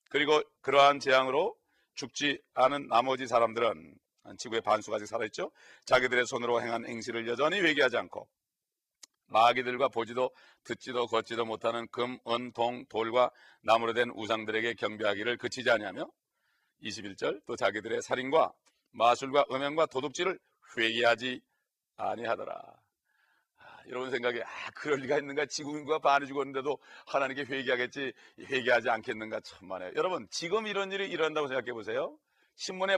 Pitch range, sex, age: 120-145 Hz, male, 40-59